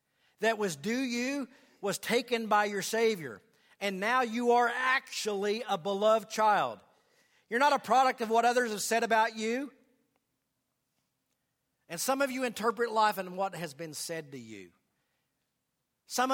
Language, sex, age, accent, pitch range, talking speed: English, male, 50-69, American, 135-220 Hz, 160 wpm